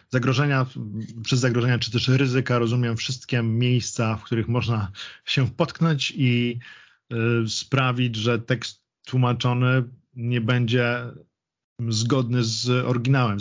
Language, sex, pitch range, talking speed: Polish, male, 115-130 Hz, 110 wpm